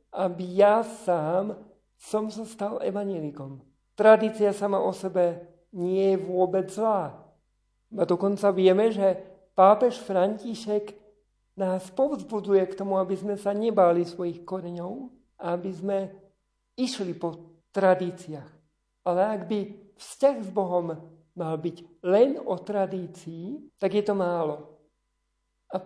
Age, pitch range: 50-69, 180-215 Hz